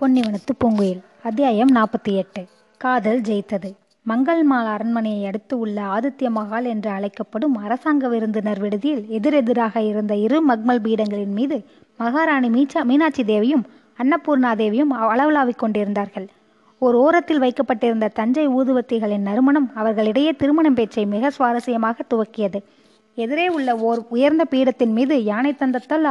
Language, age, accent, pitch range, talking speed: Tamil, 20-39, native, 220-280 Hz, 110 wpm